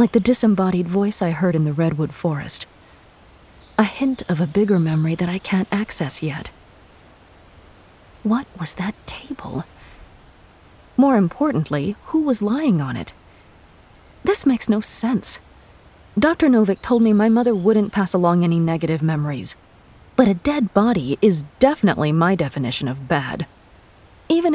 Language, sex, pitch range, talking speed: English, female, 155-220 Hz, 145 wpm